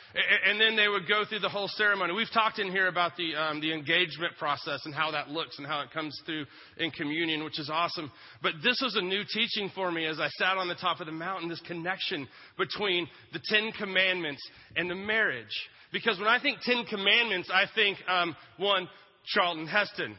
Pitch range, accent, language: 150-185 Hz, American, English